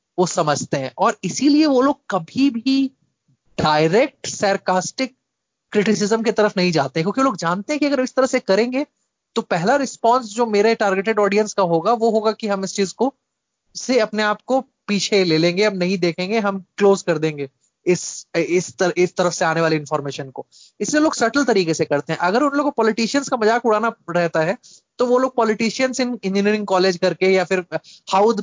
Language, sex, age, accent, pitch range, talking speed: Hindi, male, 20-39, native, 180-235 Hz, 195 wpm